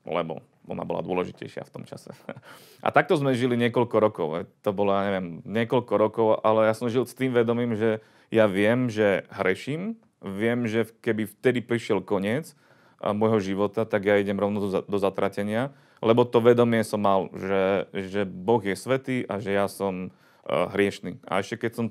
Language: Slovak